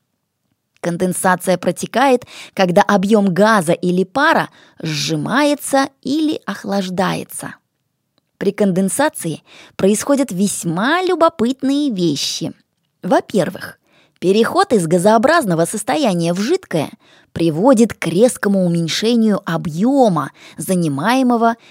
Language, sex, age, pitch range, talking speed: English, female, 20-39, 175-255 Hz, 80 wpm